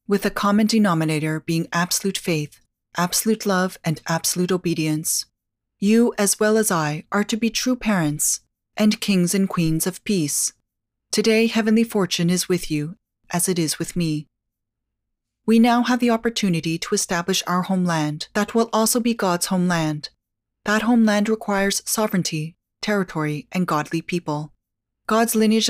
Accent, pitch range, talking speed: American, 155-205 Hz, 150 wpm